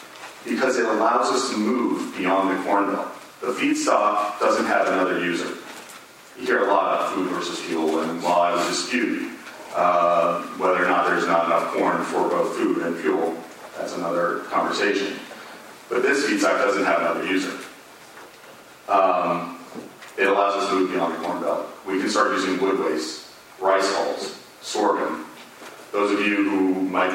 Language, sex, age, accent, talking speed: English, male, 40-59, American, 165 wpm